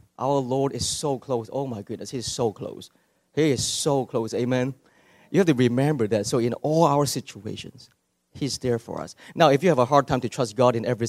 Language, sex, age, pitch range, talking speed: English, male, 30-49, 105-140 Hz, 235 wpm